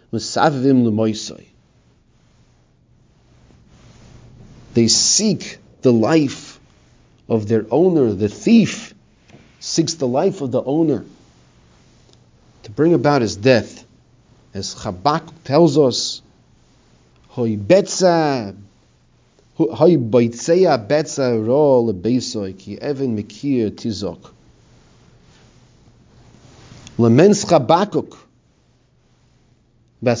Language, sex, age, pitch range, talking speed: English, male, 40-59, 115-155 Hz, 75 wpm